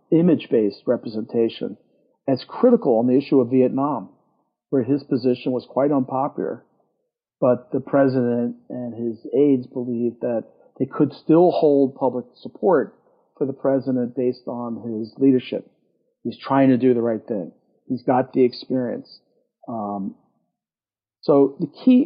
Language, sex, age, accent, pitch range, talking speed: English, male, 50-69, American, 120-145 Hz, 140 wpm